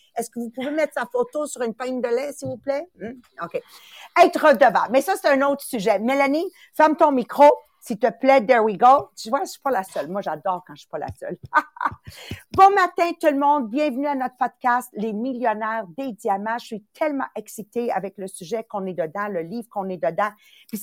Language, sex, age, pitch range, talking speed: English, female, 50-69, 215-280 Hz, 230 wpm